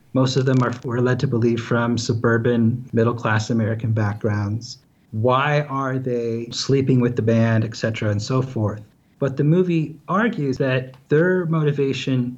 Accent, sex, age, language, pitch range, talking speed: American, male, 30-49, English, 115-135 Hz, 155 wpm